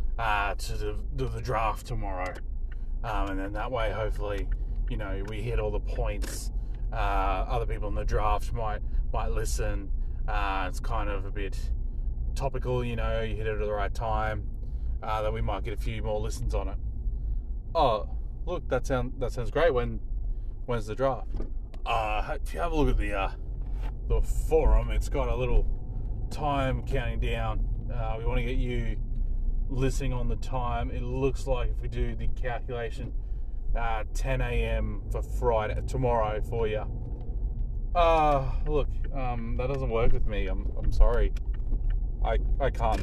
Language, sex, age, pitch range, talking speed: English, male, 20-39, 105-125 Hz, 175 wpm